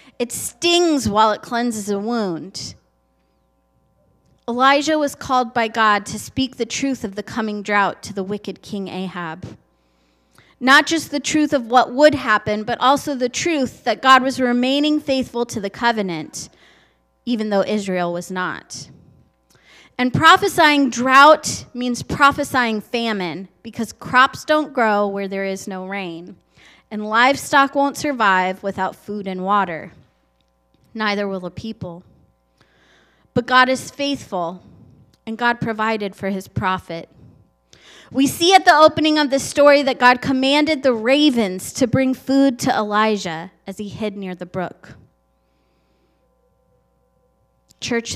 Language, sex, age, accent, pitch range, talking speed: English, female, 30-49, American, 185-255 Hz, 140 wpm